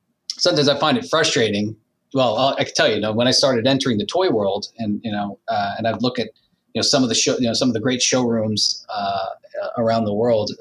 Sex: male